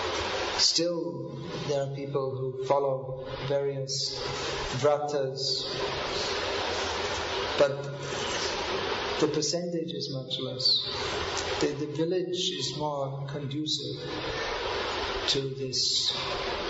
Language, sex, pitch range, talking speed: English, male, 145-185 Hz, 80 wpm